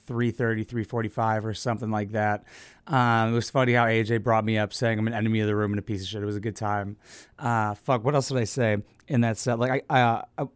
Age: 30-49